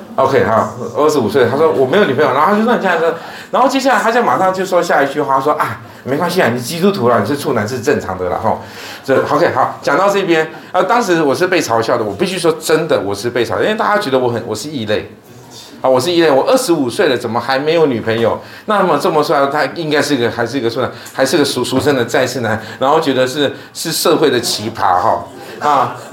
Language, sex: Chinese, male